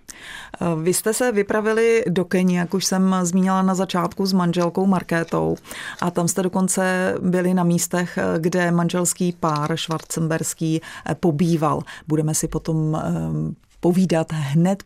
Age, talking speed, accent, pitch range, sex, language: 30-49, 130 wpm, native, 155-190 Hz, female, Czech